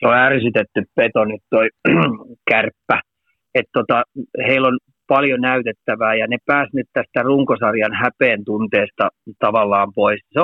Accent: native